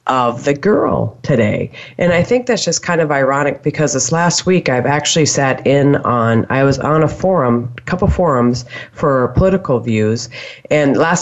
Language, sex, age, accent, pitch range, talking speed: English, female, 40-59, American, 115-145 Hz, 180 wpm